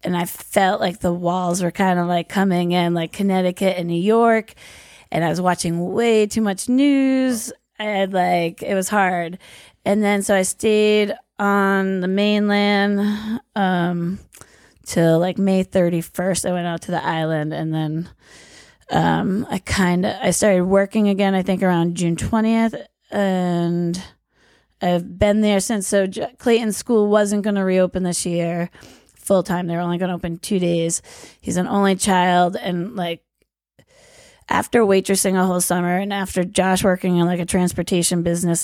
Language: English